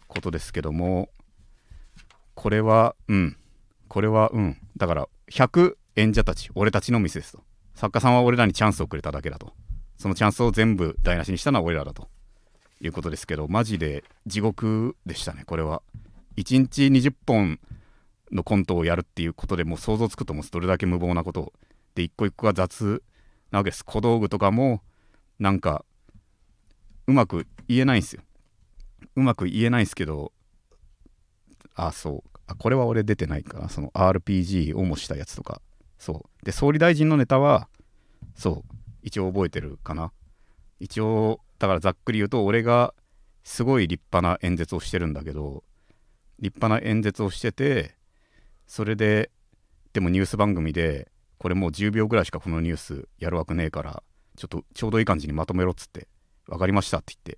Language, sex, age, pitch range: Japanese, male, 40-59, 85-110 Hz